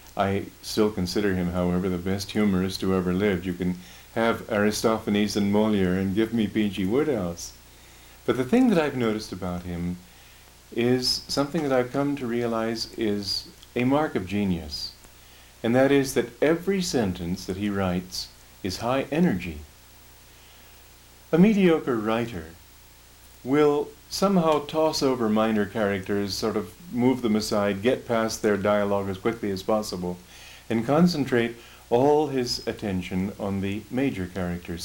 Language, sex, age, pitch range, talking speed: English, male, 50-69, 90-125 Hz, 145 wpm